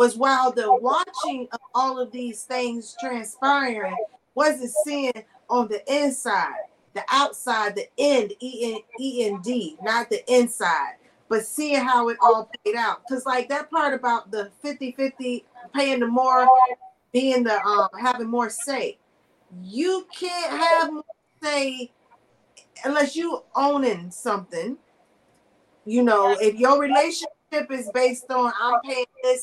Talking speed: 135 wpm